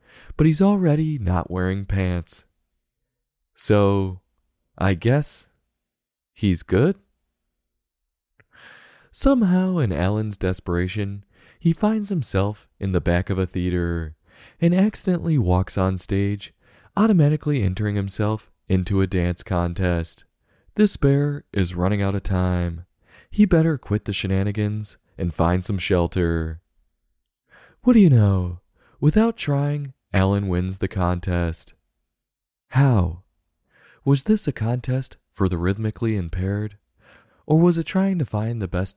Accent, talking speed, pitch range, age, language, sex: American, 120 wpm, 90-135 Hz, 20-39, English, male